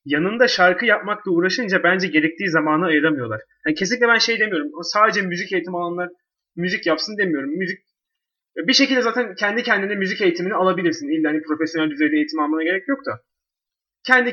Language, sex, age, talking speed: Turkish, male, 30-49, 165 wpm